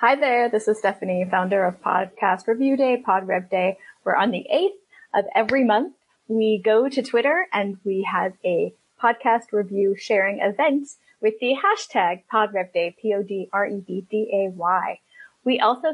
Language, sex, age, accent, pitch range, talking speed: English, female, 30-49, American, 195-240 Hz, 145 wpm